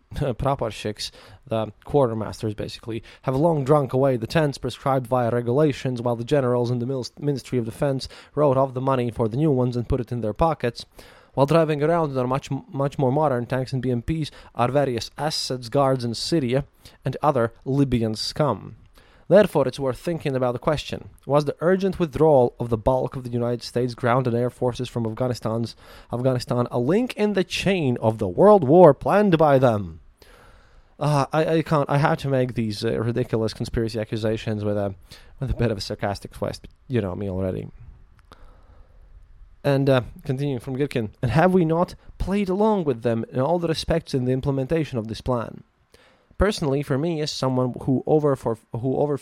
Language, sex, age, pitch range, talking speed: English, male, 20-39, 115-150 Hz, 185 wpm